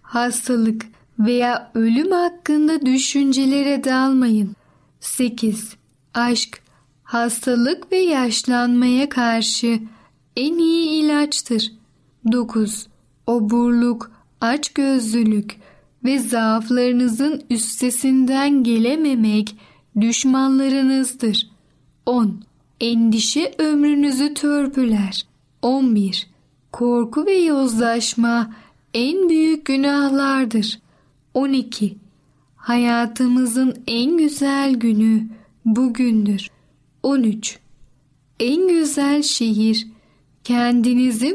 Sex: female